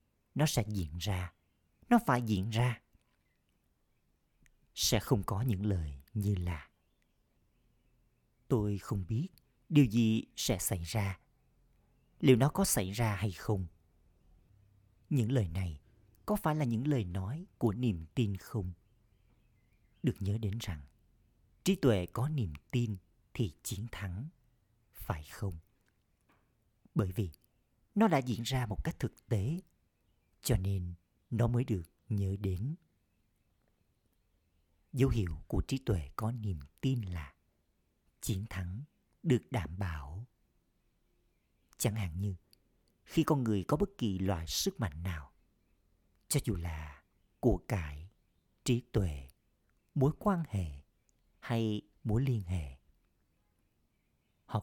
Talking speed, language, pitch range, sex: 125 wpm, Vietnamese, 85-120 Hz, male